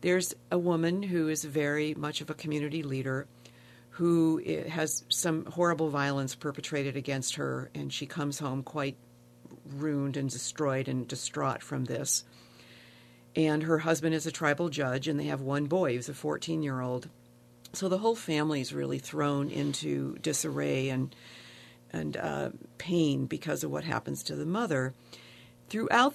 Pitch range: 120-165 Hz